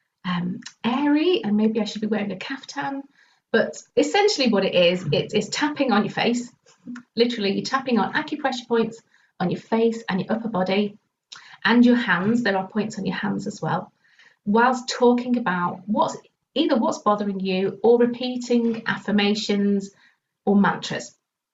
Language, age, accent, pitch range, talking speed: English, 40-59, British, 200-240 Hz, 155 wpm